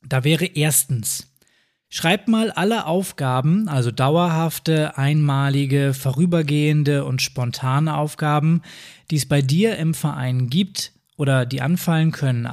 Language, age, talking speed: German, 20-39, 120 wpm